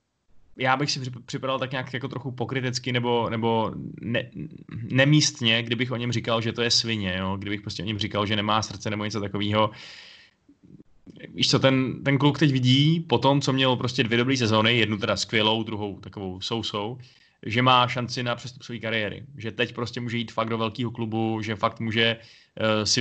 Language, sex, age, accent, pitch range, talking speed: Czech, male, 20-39, native, 110-125 Hz, 195 wpm